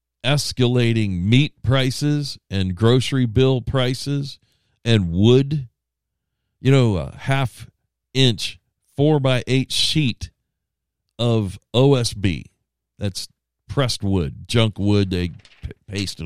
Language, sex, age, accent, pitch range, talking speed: English, male, 50-69, American, 90-120 Hz, 100 wpm